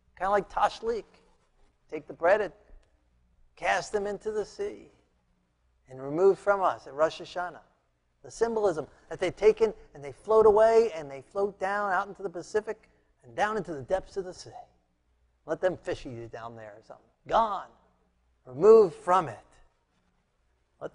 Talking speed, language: 170 wpm, English